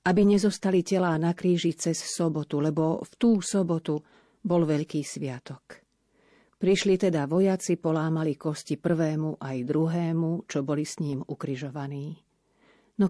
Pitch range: 155-185 Hz